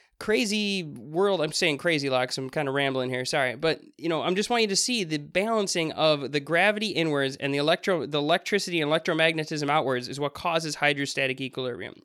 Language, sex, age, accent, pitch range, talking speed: English, male, 20-39, American, 135-175 Hz, 195 wpm